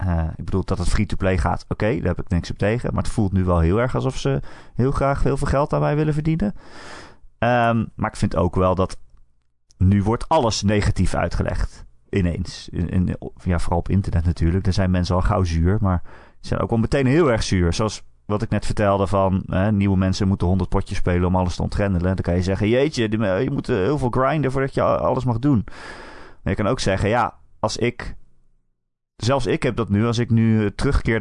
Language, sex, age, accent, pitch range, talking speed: Dutch, male, 30-49, Dutch, 90-115 Hz, 225 wpm